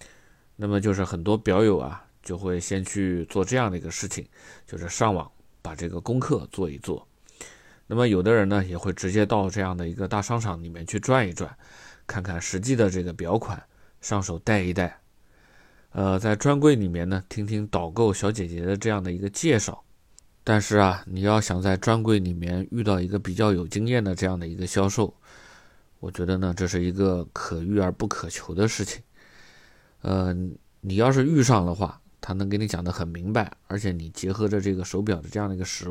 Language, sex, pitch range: Chinese, male, 90-110 Hz